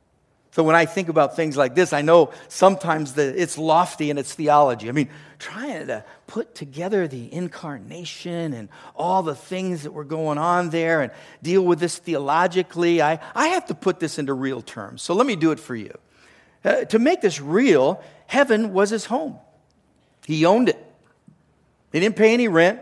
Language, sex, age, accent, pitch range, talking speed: English, male, 50-69, American, 155-195 Hz, 190 wpm